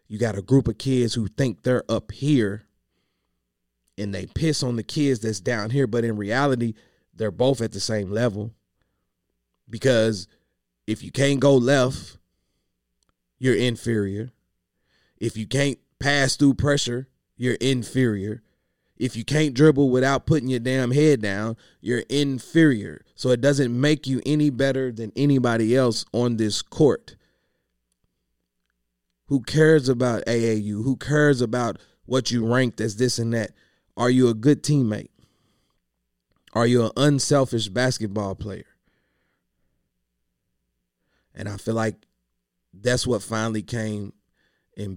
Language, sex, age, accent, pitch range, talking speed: English, male, 30-49, American, 100-130 Hz, 140 wpm